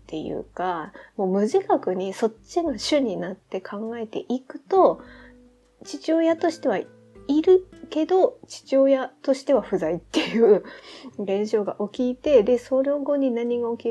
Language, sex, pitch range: Japanese, female, 180-260 Hz